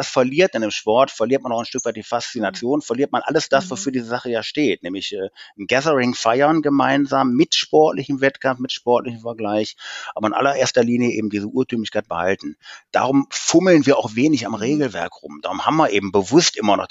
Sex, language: male, German